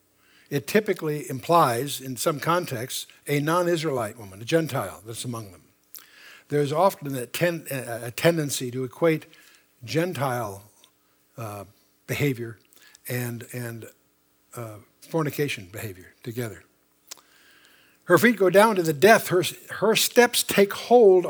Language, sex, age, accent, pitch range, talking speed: English, male, 60-79, American, 130-195 Hz, 120 wpm